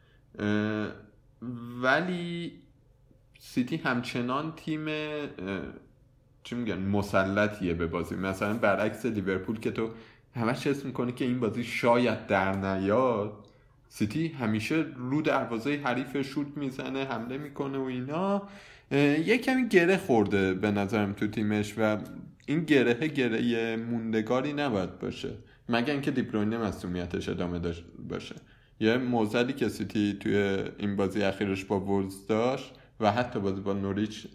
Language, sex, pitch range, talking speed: Persian, male, 100-130 Hz, 120 wpm